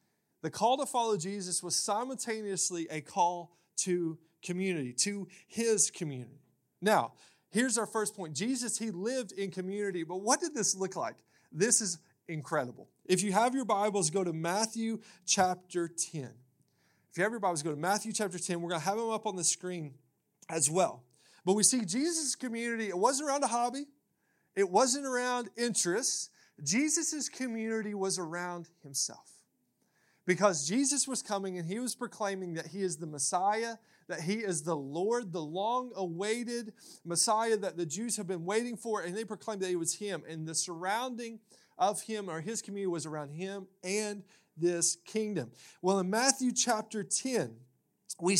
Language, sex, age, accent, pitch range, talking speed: English, male, 30-49, American, 170-225 Hz, 170 wpm